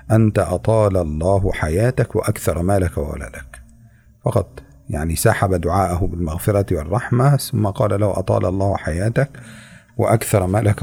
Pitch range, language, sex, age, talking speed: 90-115 Hz, Indonesian, male, 50-69, 115 wpm